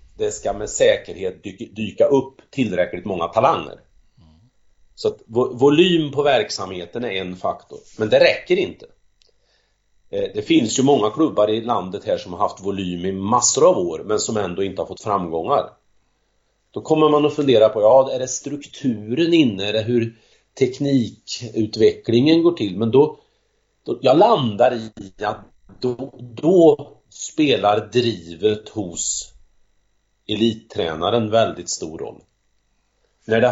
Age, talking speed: 40-59, 140 wpm